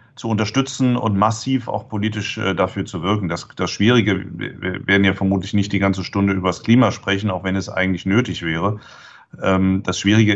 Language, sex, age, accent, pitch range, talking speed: German, male, 30-49, German, 95-110 Hz, 185 wpm